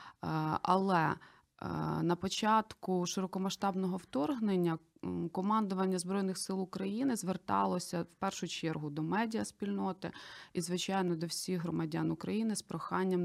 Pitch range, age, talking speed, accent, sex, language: 165-195 Hz, 20-39, 105 wpm, native, female, Ukrainian